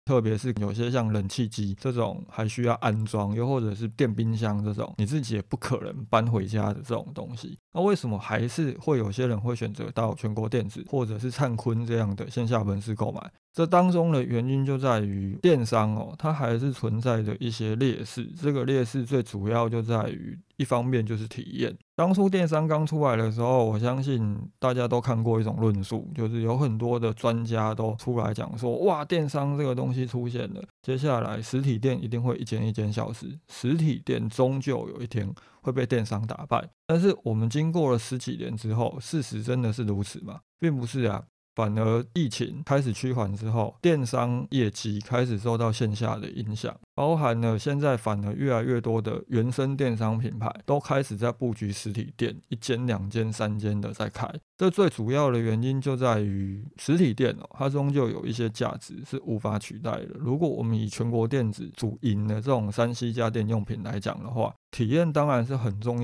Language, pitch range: Chinese, 110-135 Hz